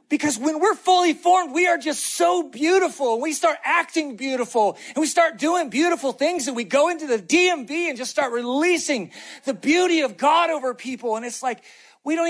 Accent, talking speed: American, 205 wpm